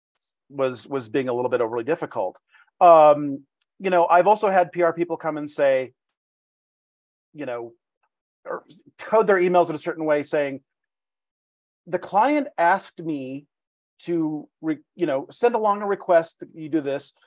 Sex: male